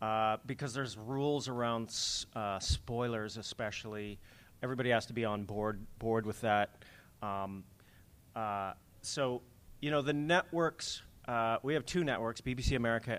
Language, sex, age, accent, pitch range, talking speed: English, male, 30-49, American, 105-130 Hz, 140 wpm